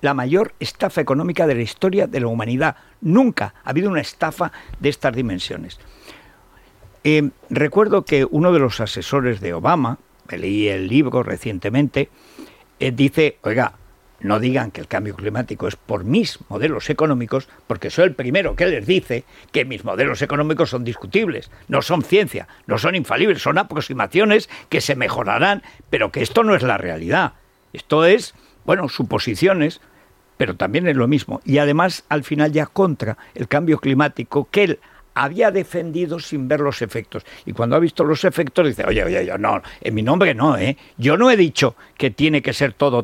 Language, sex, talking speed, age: Spanish, male, 175 wpm, 60-79